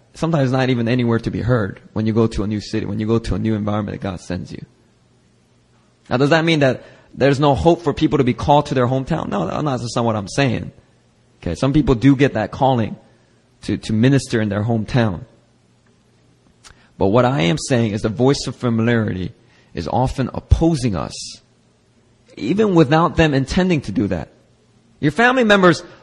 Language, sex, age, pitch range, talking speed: English, male, 20-39, 120-185 Hz, 195 wpm